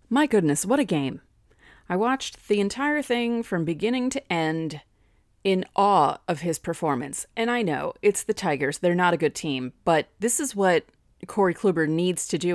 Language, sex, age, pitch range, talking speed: English, female, 30-49, 155-205 Hz, 185 wpm